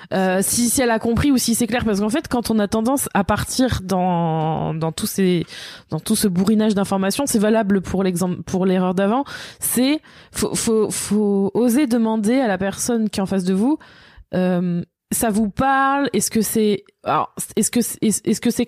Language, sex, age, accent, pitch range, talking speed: French, female, 20-39, French, 195-245 Hz, 200 wpm